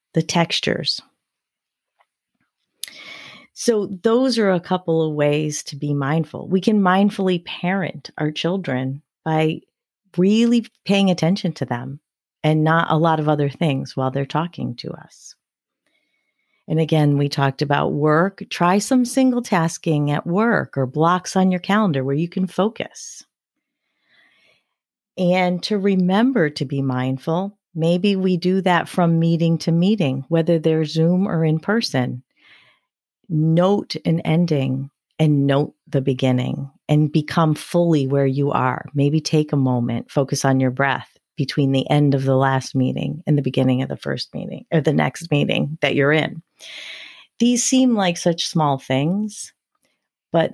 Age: 40-59